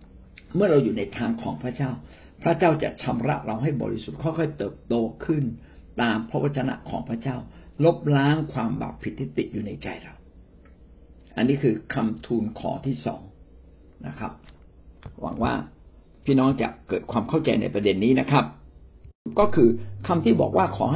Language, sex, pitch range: Thai, male, 90-130 Hz